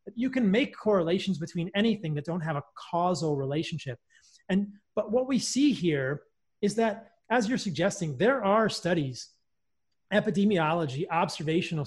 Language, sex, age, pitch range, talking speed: English, male, 30-49, 145-205 Hz, 140 wpm